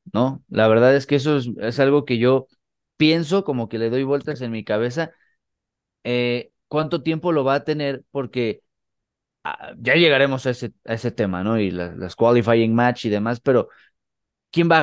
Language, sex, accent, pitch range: Spanish, male, Mexican, 110-145 Hz